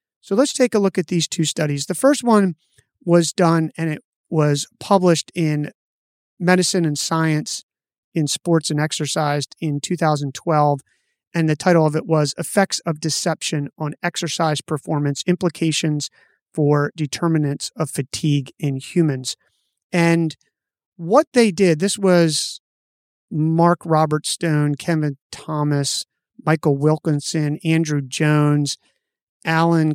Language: English